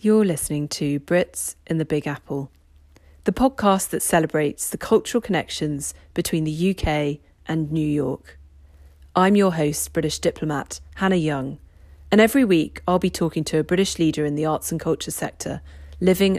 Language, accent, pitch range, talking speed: English, British, 150-230 Hz, 165 wpm